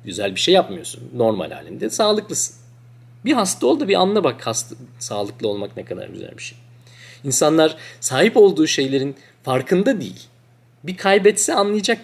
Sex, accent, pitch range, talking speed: male, native, 120-175 Hz, 155 wpm